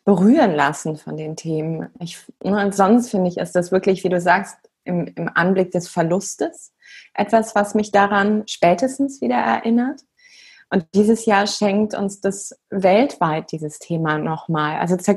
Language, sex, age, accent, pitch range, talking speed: German, female, 20-39, German, 180-225 Hz, 150 wpm